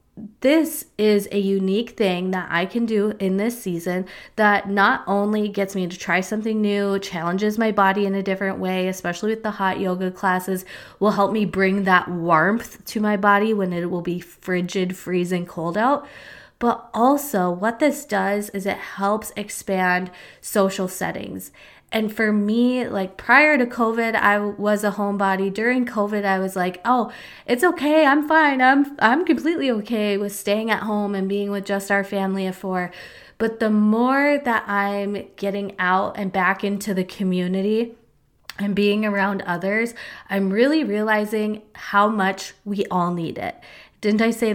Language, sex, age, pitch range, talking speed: English, female, 20-39, 190-220 Hz, 170 wpm